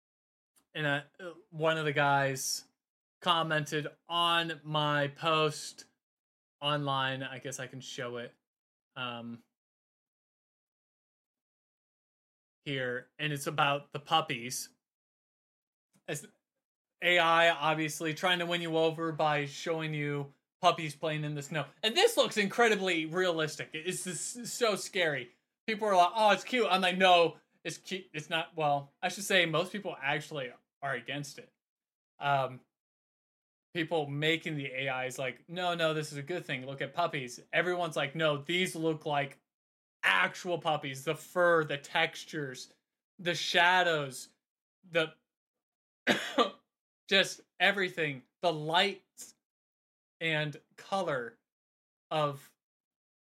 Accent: American